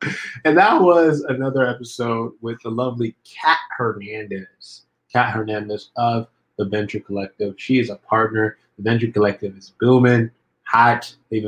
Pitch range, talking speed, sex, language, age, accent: 100-115 Hz, 140 wpm, male, English, 20-39, American